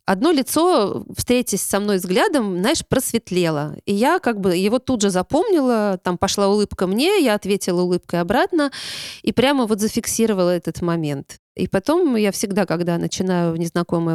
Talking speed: 160 wpm